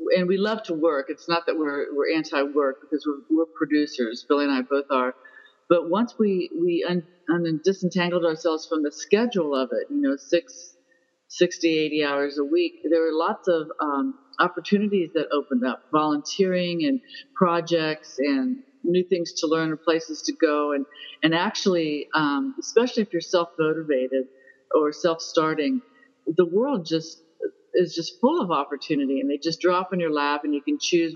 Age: 50-69